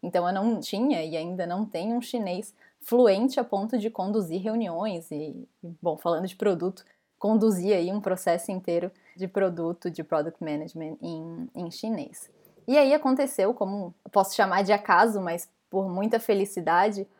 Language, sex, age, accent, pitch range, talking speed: Portuguese, female, 10-29, Brazilian, 195-265 Hz, 160 wpm